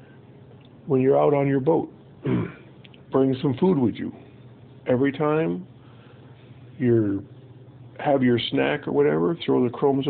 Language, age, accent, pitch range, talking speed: English, 50-69, American, 120-135 Hz, 130 wpm